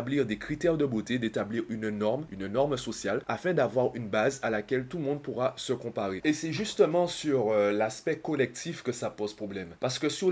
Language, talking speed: French, 210 wpm